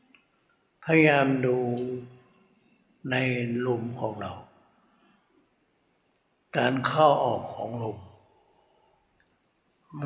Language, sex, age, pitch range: Thai, male, 60-79, 125-145 Hz